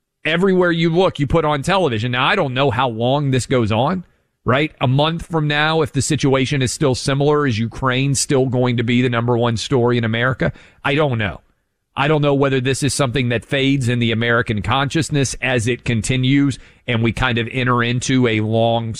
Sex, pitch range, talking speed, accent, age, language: male, 110-140 Hz, 210 wpm, American, 40-59, English